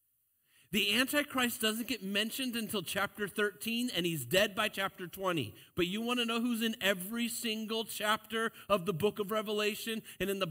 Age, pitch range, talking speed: 40-59, 150-220 Hz, 185 wpm